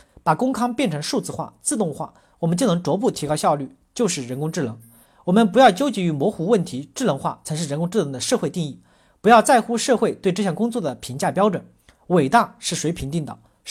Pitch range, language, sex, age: 155-225 Hz, Chinese, male, 40-59